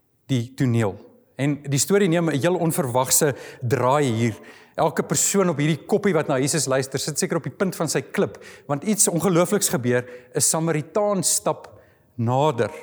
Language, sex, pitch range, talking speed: English, male, 130-165 Hz, 170 wpm